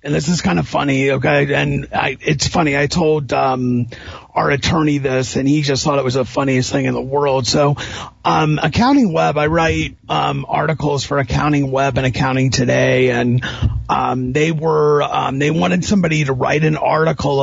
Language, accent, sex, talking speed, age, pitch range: English, American, male, 190 wpm, 40-59, 140-205 Hz